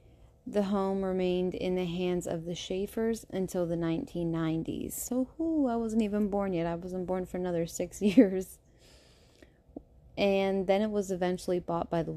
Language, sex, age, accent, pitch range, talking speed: English, female, 20-39, American, 170-200 Hz, 170 wpm